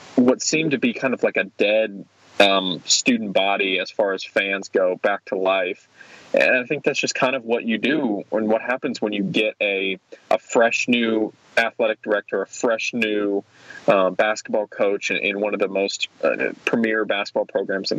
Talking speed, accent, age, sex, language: 195 wpm, American, 20-39, male, English